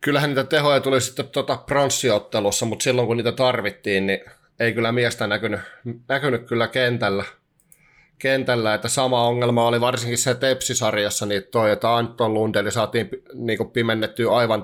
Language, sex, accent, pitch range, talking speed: Finnish, male, native, 105-135 Hz, 145 wpm